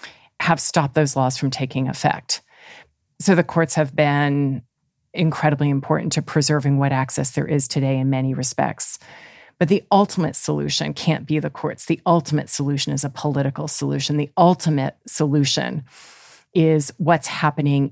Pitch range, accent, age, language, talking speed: 140-155 Hz, American, 40-59, English, 150 wpm